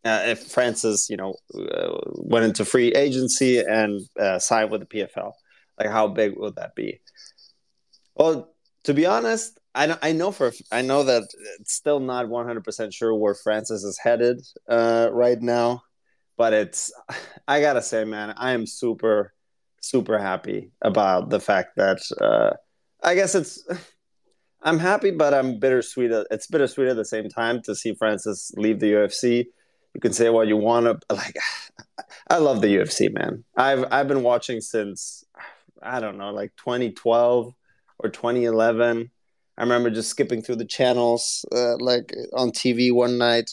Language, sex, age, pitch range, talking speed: English, male, 20-39, 110-130 Hz, 165 wpm